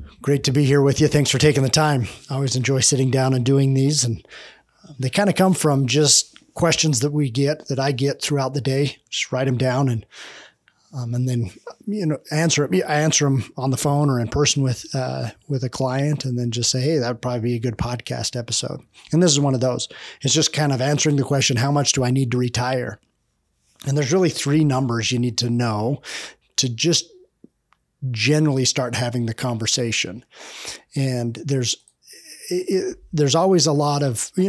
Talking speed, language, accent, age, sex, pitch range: 210 wpm, English, American, 30-49, male, 125-150 Hz